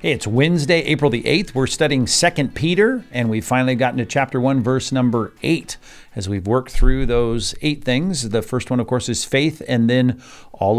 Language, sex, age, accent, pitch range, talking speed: English, male, 40-59, American, 115-140 Hz, 205 wpm